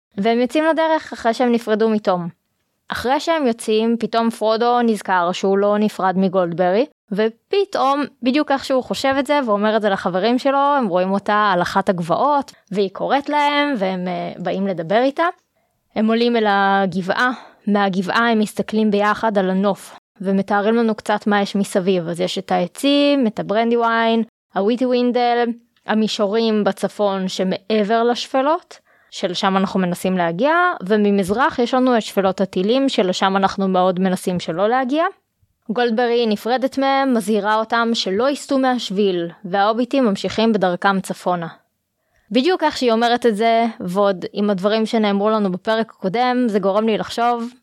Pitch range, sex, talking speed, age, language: 195-245 Hz, female, 145 wpm, 20-39, Hebrew